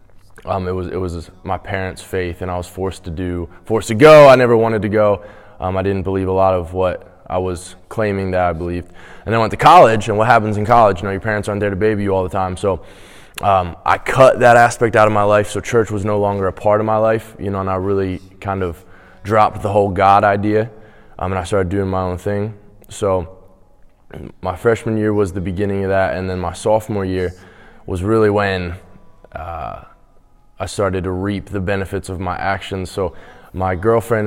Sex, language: male, English